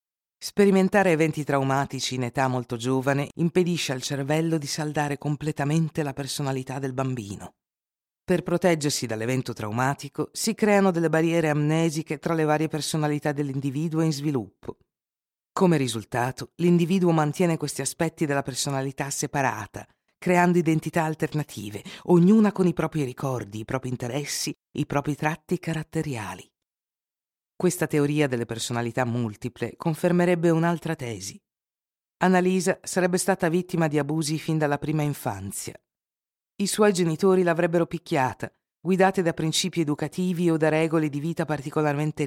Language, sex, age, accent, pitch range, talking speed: Italian, female, 50-69, native, 135-170 Hz, 130 wpm